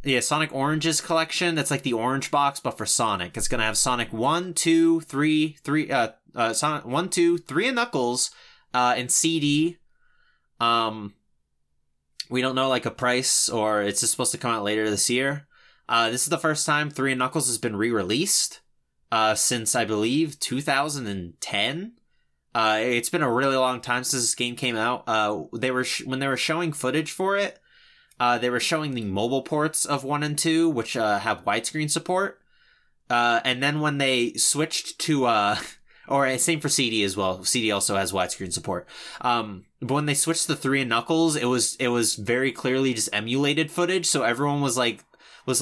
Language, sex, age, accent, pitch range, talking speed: English, male, 20-39, American, 115-150 Hz, 190 wpm